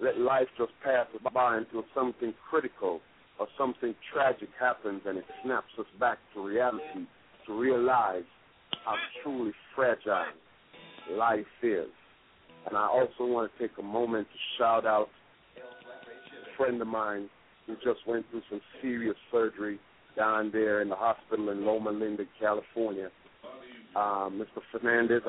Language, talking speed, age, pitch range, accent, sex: English, 140 wpm, 50-69, 110-140 Hz, American, male